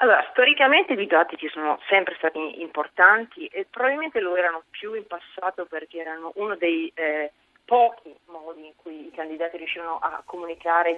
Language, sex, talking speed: Italian, female, 165 wpm